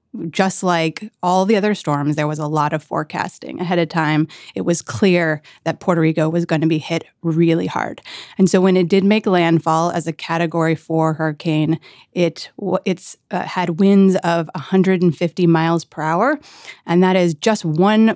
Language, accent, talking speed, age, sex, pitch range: English, American, 180 wpm, 30-49, female, 160-190 Hz